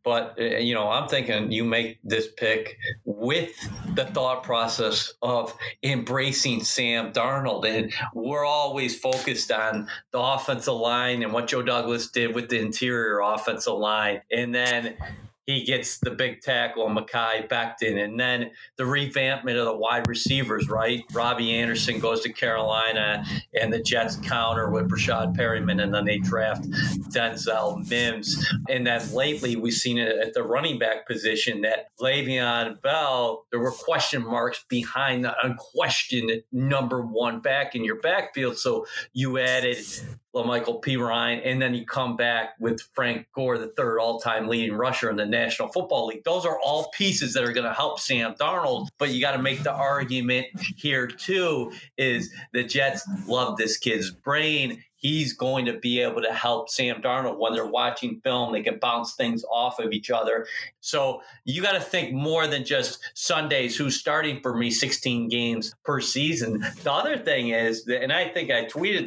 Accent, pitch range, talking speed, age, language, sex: American, 115-135 Hz, 170 wpm, 40-59, English, male